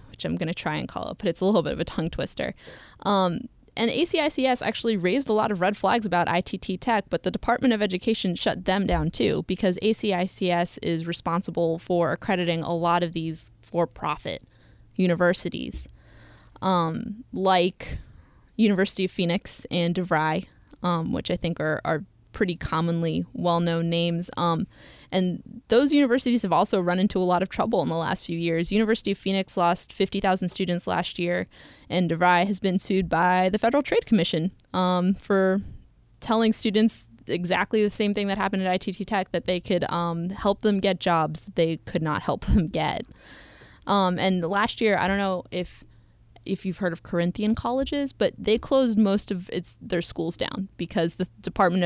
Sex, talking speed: female, 180 wpm